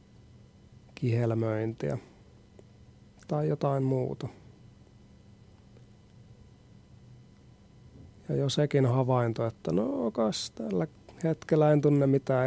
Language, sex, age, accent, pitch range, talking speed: Finnish, male, 40-59, native, 115-130 Hz, 70 wpm